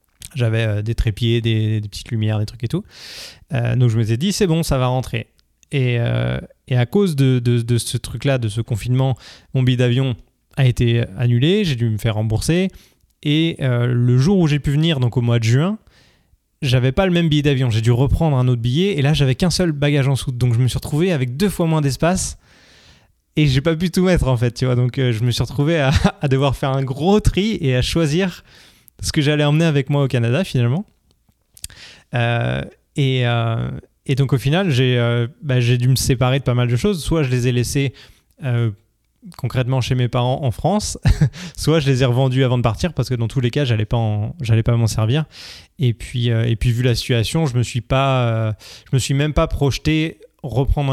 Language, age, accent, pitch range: French, 20-39, French, 120-145 Hz